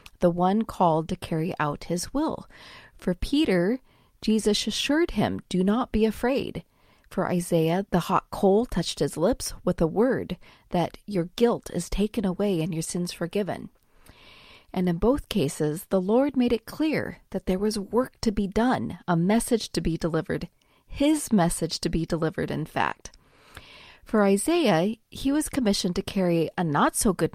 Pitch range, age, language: 175-230 Hz, 40-59, English